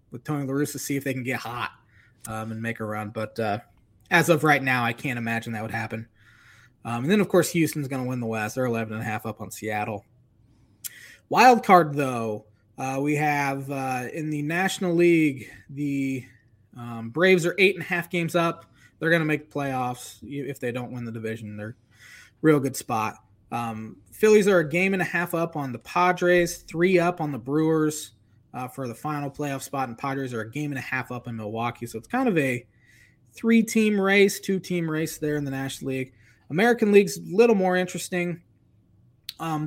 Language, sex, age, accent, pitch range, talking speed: English, male, 20-39, American, 115-160 Hz, 205 wpm